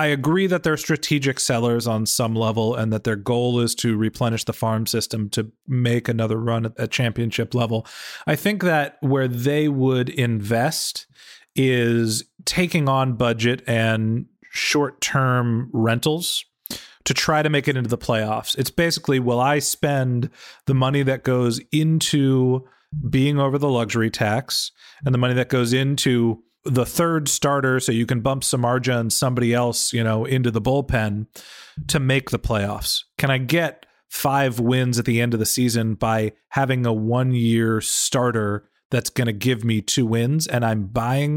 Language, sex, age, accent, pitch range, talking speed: English, male, 30-49, American, 115-140 Hz, 170 wpm